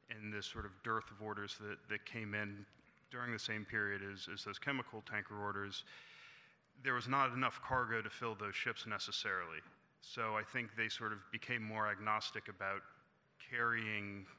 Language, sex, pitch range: English, male, 105-120 Hz